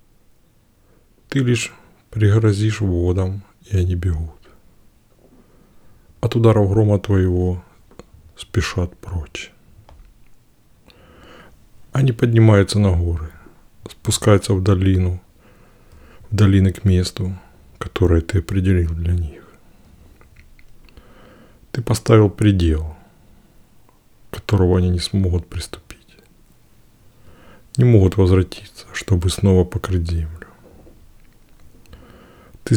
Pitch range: 90-105 Hz